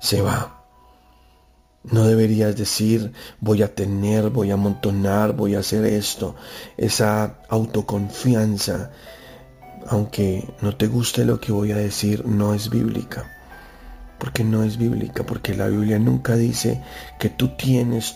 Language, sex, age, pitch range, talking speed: Spanish, male, 40-59, 100-120 Hz, 135 wpm